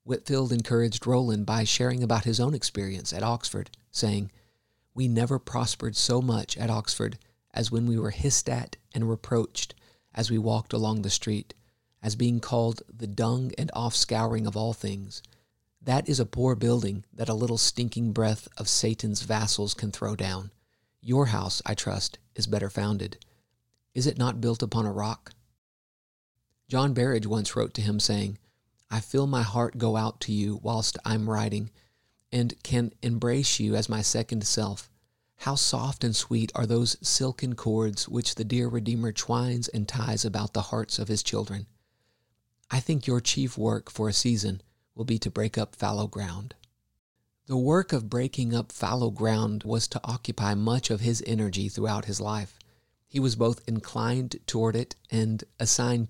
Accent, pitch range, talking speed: American, 105-120 Hz, 170 wpm